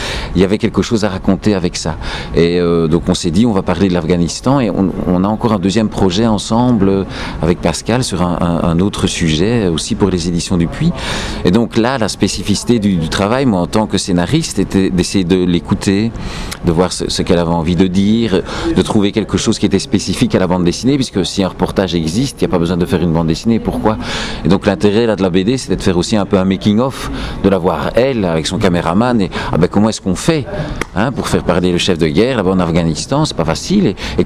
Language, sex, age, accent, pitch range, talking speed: French, male, 50-69, French, 90-110 Hz, 245 wpm